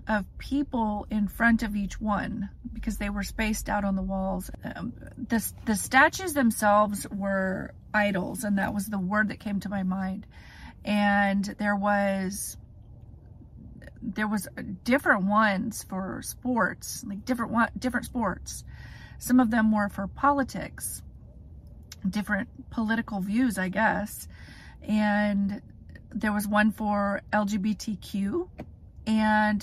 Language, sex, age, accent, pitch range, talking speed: English, female, 40-59, American, 190-225 Hz, 130 wpm